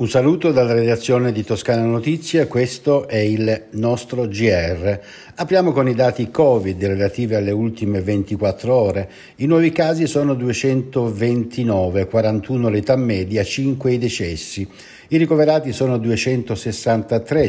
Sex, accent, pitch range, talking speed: male, native, 105-130 Hz, 125 wpm